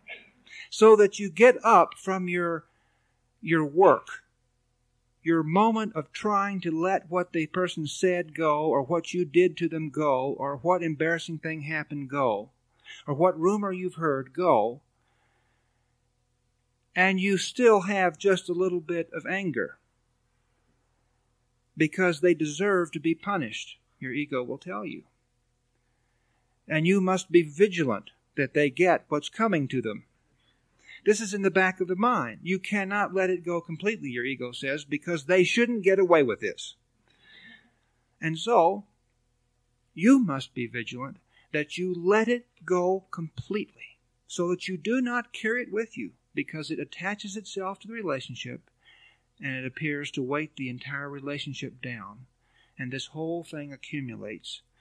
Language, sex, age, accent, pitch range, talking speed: English, male, 50-69, American, 130-190 Hz, 150 wpm